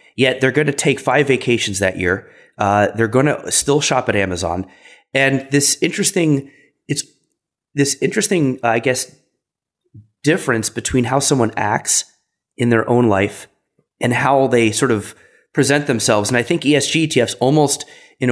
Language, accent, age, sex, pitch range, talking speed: English, American, 30-49, male, 115-145 Hz, 155 wpm